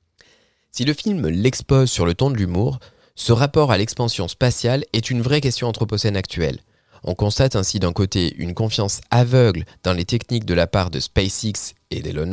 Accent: French